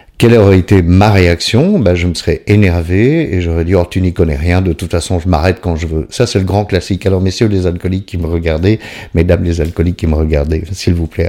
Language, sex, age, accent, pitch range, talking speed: French, male, 50-69, French, 85-105 Hz, 260 wpm